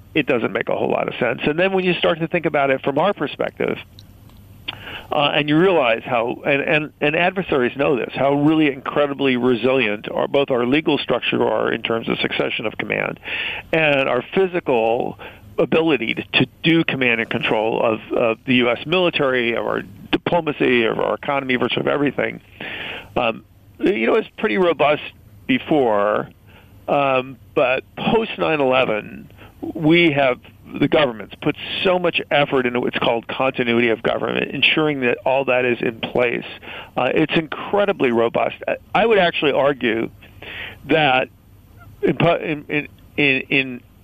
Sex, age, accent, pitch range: male, 50-69, American, 120-150 Hz